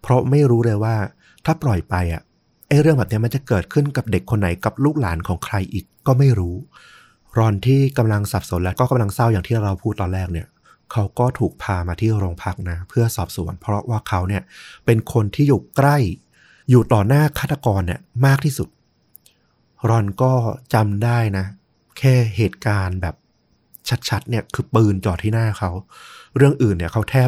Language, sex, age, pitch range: Thai, male, 30-49, 100-125 Hz